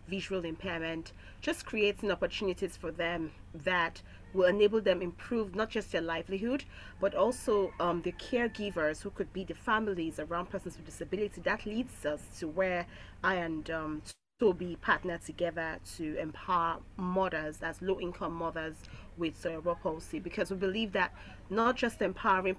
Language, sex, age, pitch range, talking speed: English, female, 30-49, 170-205 Hz, 155 wpm